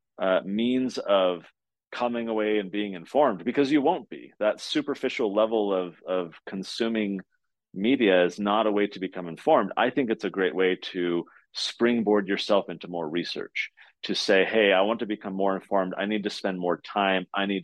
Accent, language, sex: American, English, male